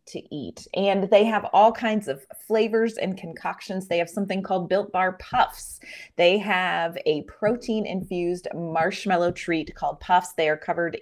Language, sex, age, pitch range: English, female, 30-49, 170-205 Hz